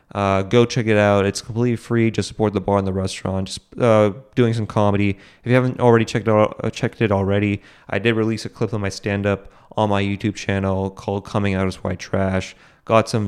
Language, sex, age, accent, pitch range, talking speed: English, male, 20-39, American, 95-110 Hz, 220 wpm